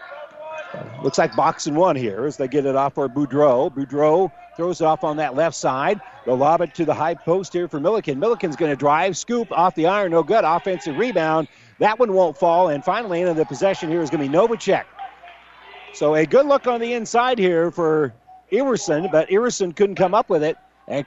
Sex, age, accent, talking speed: male, 50-69, American, 215 wpm